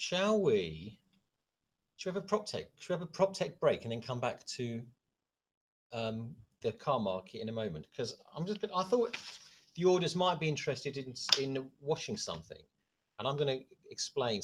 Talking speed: 185 wpm